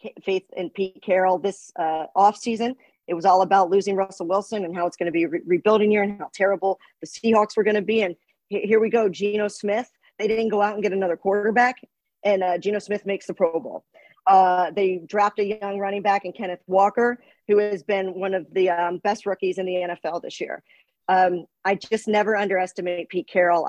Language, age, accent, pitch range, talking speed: English, 40-59, American, 180-210 Hz, 215 wpm